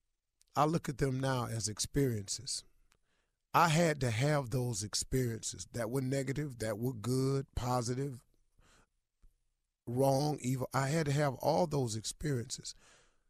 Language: English